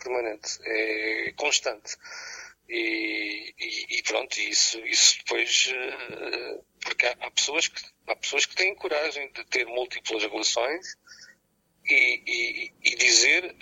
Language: Portuguese